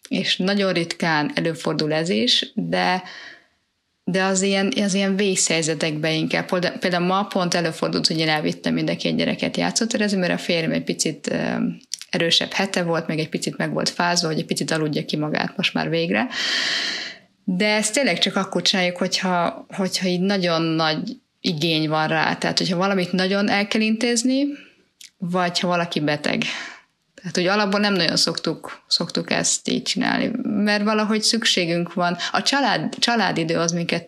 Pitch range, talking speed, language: 165-210 Hz, 160 wpm, Hungarian